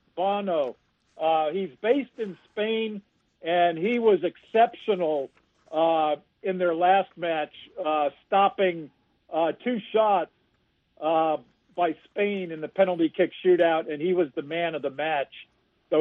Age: 50-69